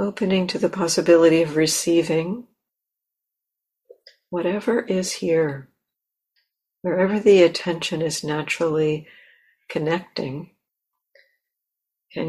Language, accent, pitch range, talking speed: English, American, 150-180 Hz, 80 wpm